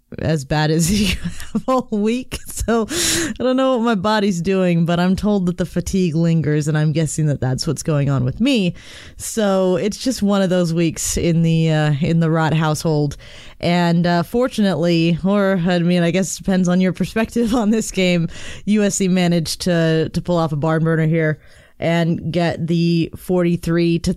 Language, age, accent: English, 20-39, American